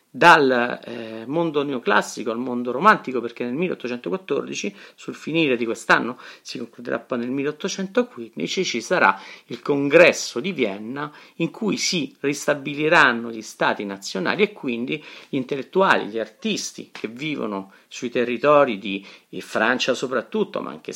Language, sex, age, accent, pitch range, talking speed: Italian, male, 50-69, native, 115-170 Hz, 135 wpm